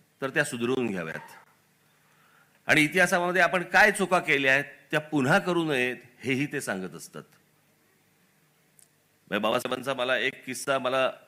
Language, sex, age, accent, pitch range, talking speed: Marathi, male, 40-59, native, 135-185 Hz, 135 wpm